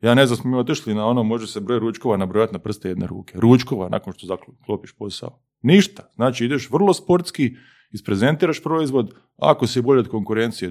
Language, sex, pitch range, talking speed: Croatian, male, 105-150 Hz, 190 wpm